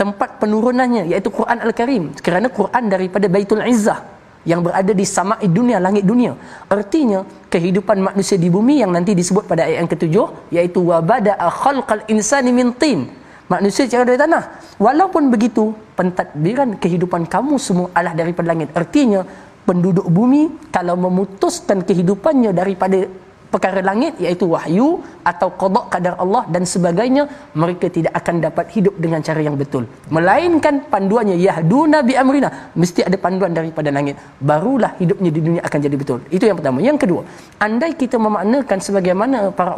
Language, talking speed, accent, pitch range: Malayalam, 155 wpm, Indonesian, 170-220 Hz